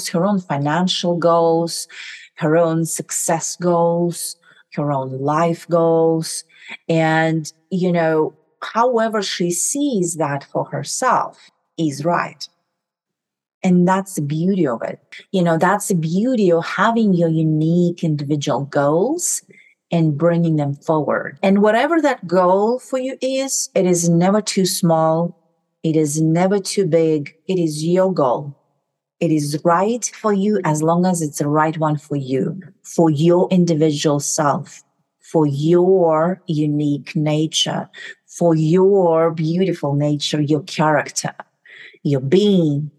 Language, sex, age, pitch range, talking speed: English, female, 40-59, 155-180 Hz, 135 wpm